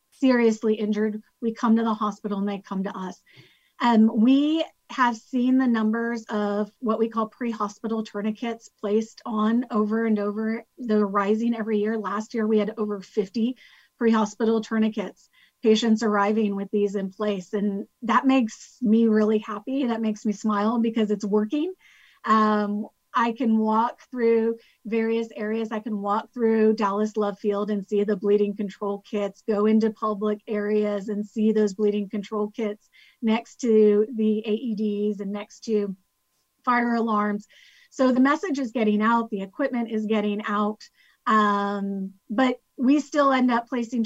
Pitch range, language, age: 210-230 Hz, English, 30-49